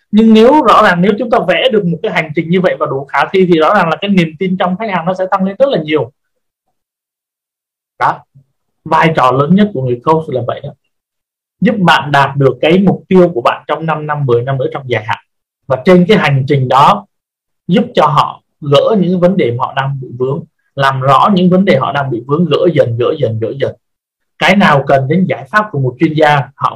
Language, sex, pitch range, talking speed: Vietnamese, male, 140-185 Hz, 245 wpm